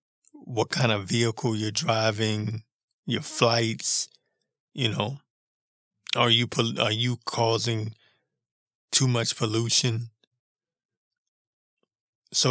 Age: 20-39